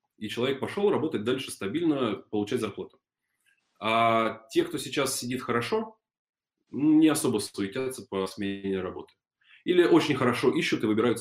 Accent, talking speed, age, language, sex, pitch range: native, 140 wpm, 20-39, Russian, male, 105-140 Hz